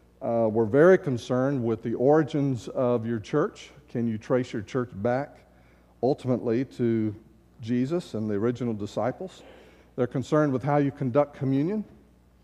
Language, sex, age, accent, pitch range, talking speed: English, male, 50-69, American, 105-135 Hz, 145 wpm